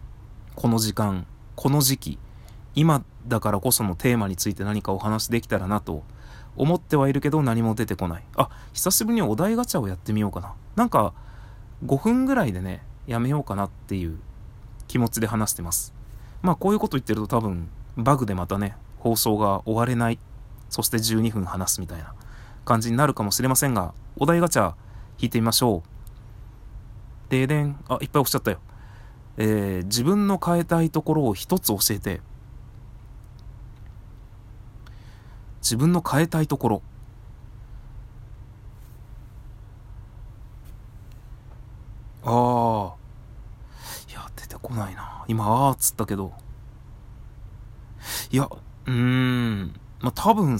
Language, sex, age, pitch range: Japanese, male, 20-39, 105-125 Hz